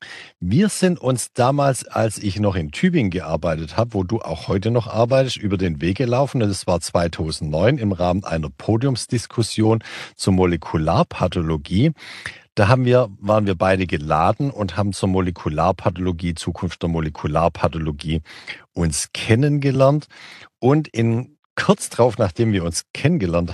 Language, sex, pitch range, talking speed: German, male, 90-125 Hz, 140 wpm